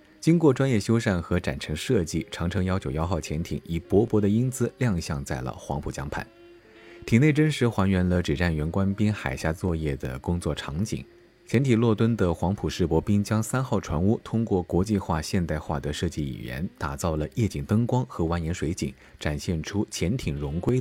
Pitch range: 80-110 Hz